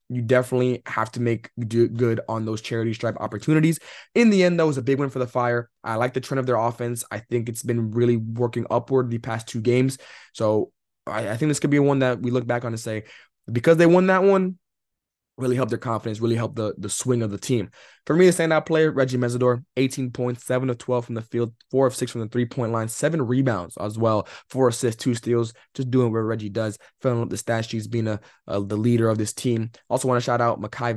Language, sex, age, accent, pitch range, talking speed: English, male, 20-39, American, 115-130 Hz, 245 wpm